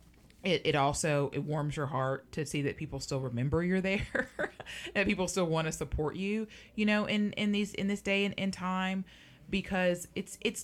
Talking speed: 205 wpm